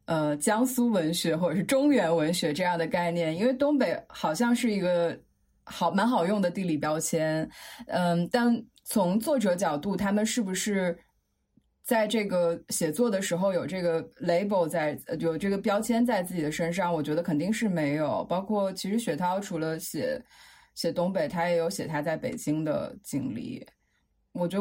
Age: 20-39